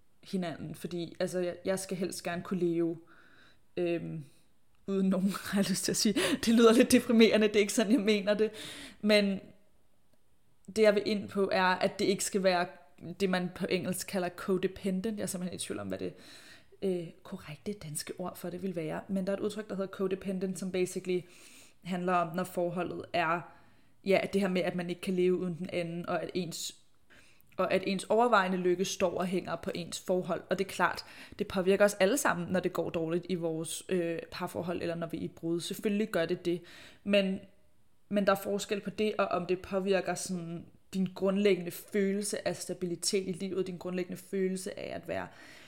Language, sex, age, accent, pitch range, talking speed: Danish, female, 20-39, native, 175-200 Hz, 205 wpm